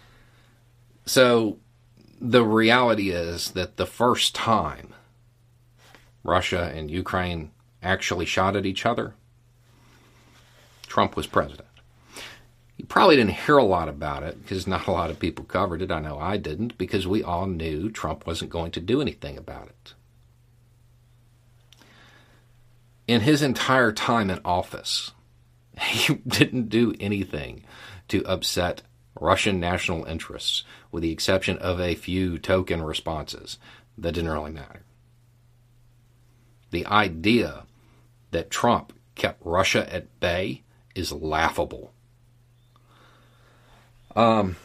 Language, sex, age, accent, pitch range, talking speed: English, male, 40-59, American, 90-120 Hz, 120 wpm